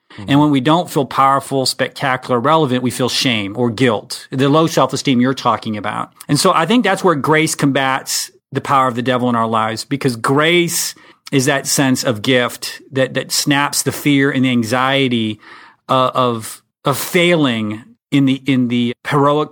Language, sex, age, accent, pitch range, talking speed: English, male, 40-59, American, 125-145 Hz, 185 wpm